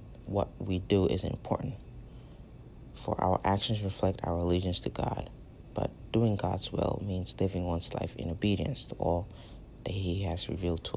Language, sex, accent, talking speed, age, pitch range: English, male, American, 165 wpm, 30-49, 95-115 Hz